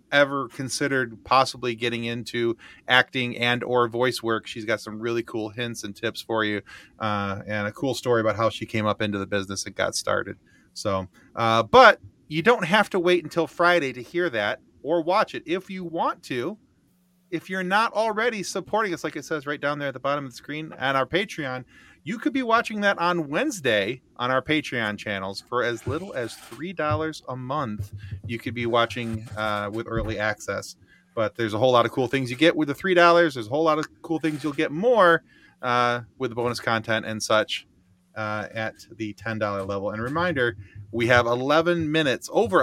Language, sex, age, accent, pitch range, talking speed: English, male, 30-49, American, 105-155 Hz, 205 wpm